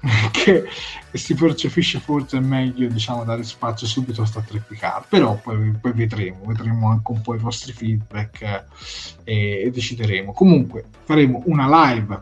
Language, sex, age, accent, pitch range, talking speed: Italian, male, 30-49, native, 110-140 Hz, 150 wpm